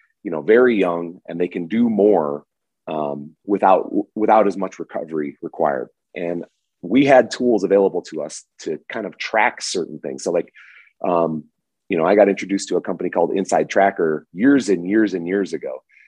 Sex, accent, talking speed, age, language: male, American, 185 wpm, 30-49, English